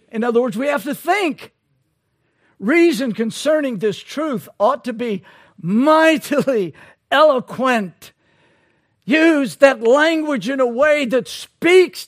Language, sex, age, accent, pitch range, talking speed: English, male, 60-79, American, 210-295 Hz, 120 wpm